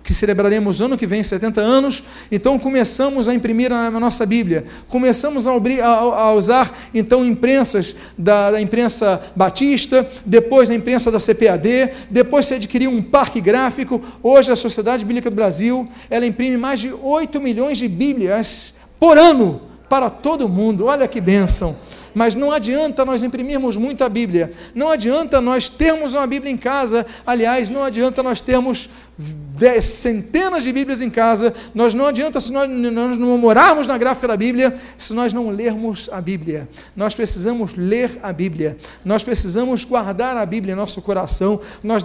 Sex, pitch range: male, 220-265 Hz